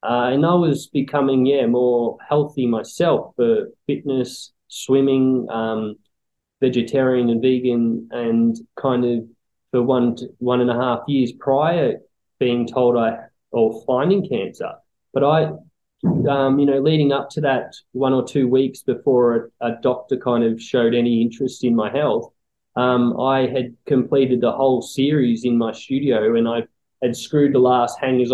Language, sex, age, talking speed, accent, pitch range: English, male, 20-39, 160 wpm, Australian, 120-130 Hz